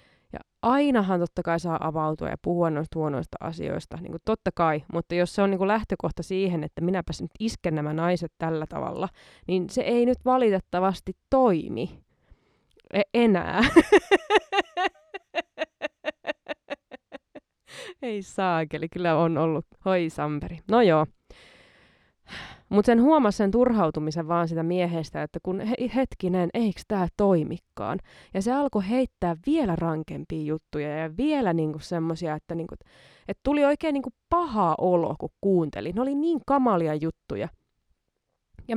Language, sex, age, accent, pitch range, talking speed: Finnish, female, 20-39, native, 165-240 Hz, 135 wpm